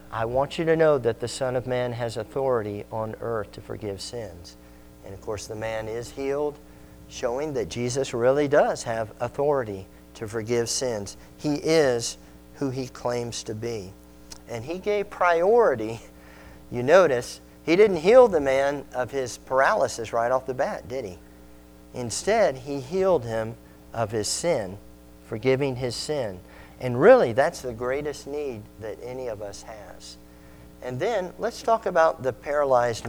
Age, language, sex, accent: 50-69, English, male, American